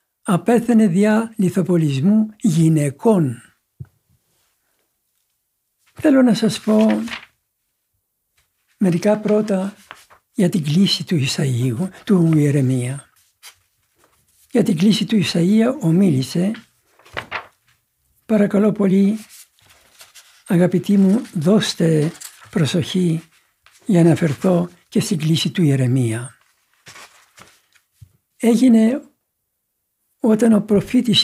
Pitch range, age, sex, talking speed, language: 155-215 Hz, 60-79, male, 80 wpm, Greek